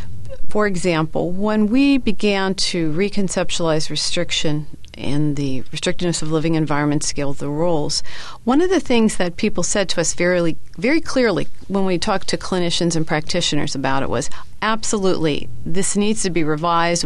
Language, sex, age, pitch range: English, female, 40-59, 165-220 Hz